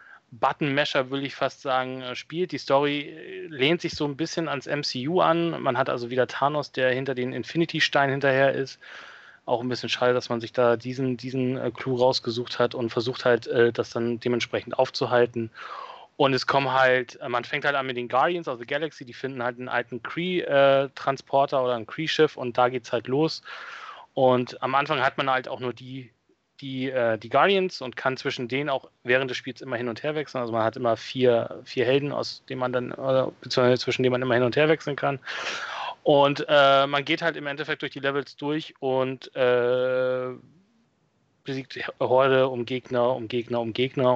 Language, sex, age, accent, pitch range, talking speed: German, male, 30-49, German, 125-145 Hz, 200 wpm